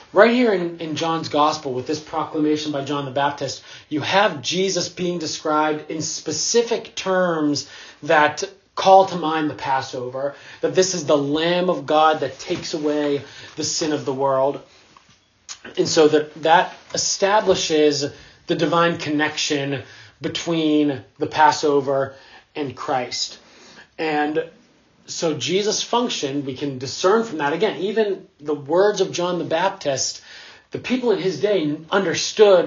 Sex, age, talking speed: male, 30-49, 145 wpm